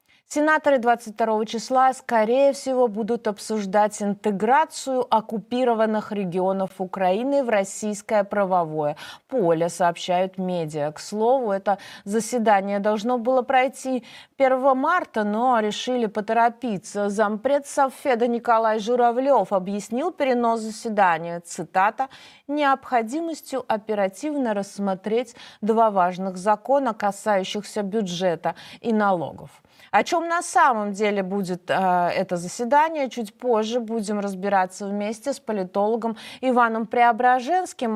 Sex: female